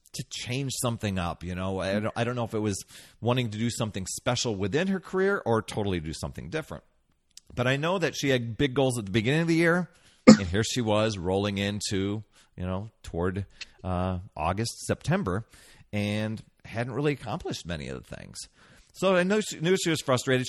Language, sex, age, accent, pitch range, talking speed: English, male, 40-59, American, 100-140 Hz, 200 wpm